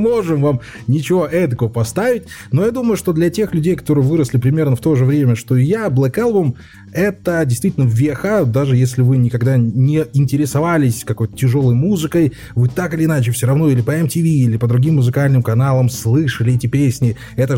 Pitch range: 125-180 Hz